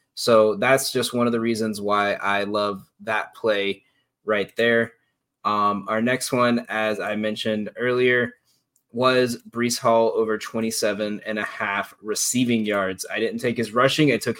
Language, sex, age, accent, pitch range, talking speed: English, male, 20-39, American, 110-135 Hz, 165 wpm